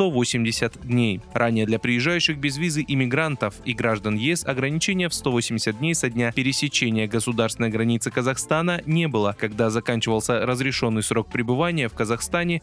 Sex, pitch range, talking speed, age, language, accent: male, 115-160 Hz, 145 wpm, 20-39, Russian, native